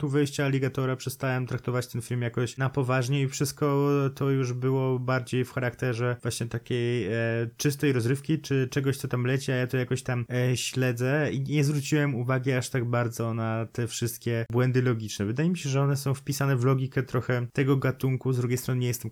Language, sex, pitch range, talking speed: Polish, male, 120-145 Hz, 200 wpm